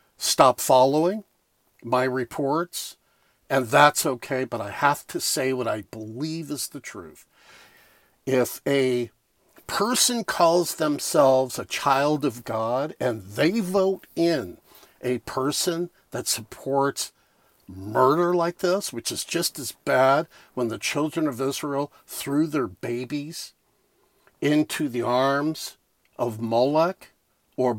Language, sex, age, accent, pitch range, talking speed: English, male, 50-69, American, 125-160 Hz, 125 wpm